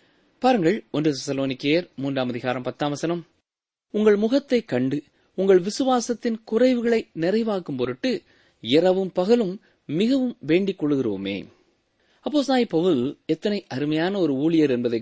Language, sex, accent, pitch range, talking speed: Tamil, male, native, 150-215 Hz, 100 wpm